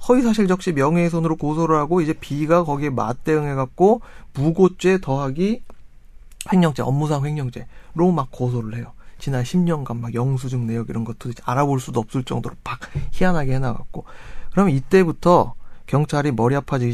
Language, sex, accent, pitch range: Korean, male, native, 120-170 Hz